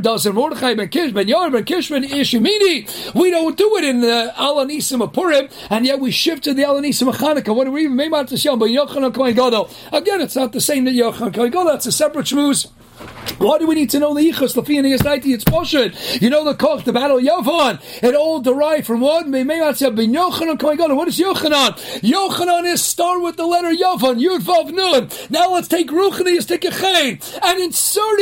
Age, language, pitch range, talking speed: 40-59, English, 255-350 Hz, 170 wpm